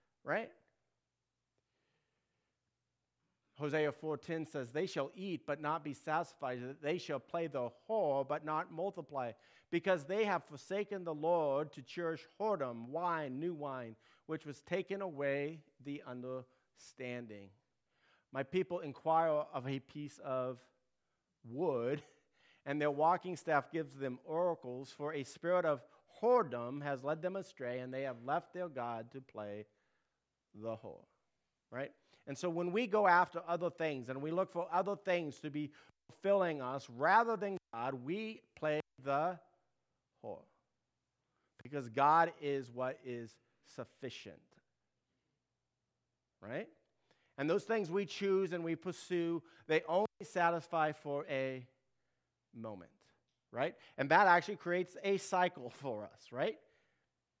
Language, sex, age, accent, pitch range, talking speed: English, male, 40-59, American, 130-175 Hz, 135 wpm